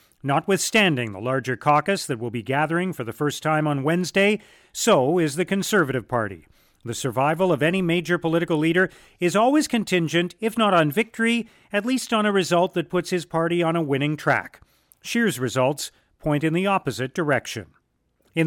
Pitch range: 140-185 Hz